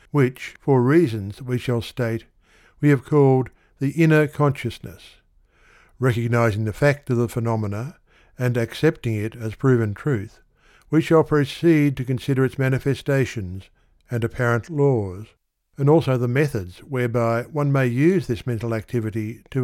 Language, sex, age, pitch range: English, male, 60-79, 115-140 Hz